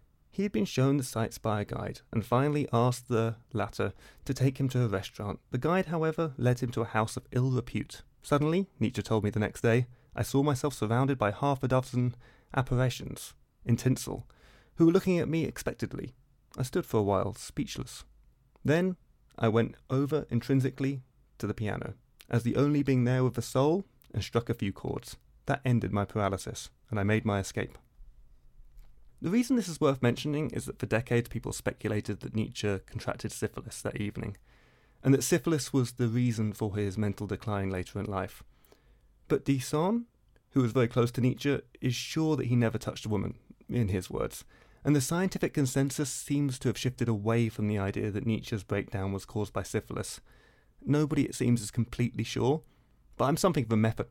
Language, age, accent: English, 30-49, British